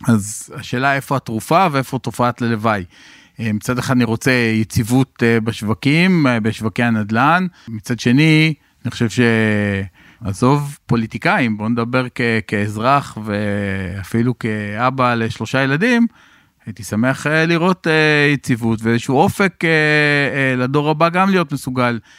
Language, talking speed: Hebrew, 110 wpm